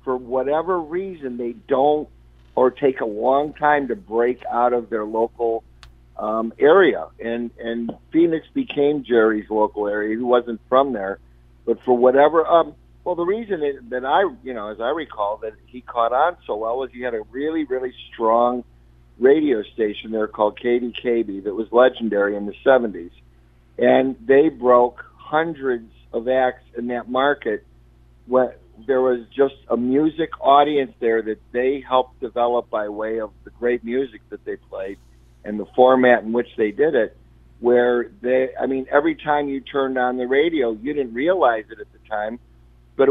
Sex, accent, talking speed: male, American, 175 wpm